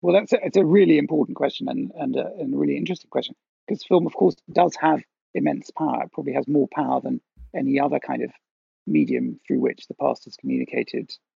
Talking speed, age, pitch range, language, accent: 215 wpm, 40-59, 150-195 Hz, English, British